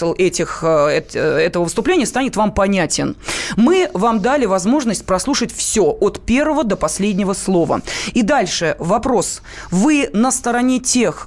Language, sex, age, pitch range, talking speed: Russian, female, 20-39, 185-235 Hz, 130 wpm